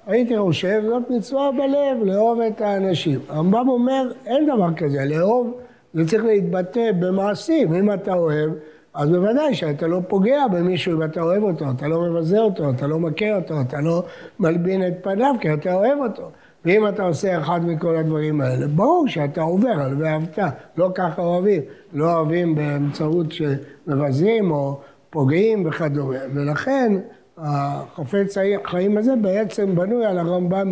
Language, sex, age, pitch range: English, male, 60-79, 155-215 Hz